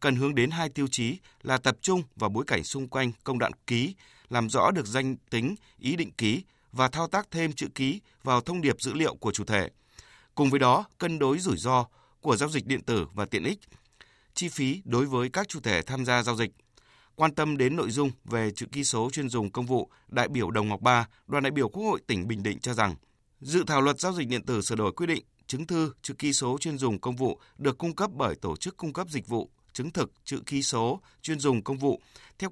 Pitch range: 120-150 Hz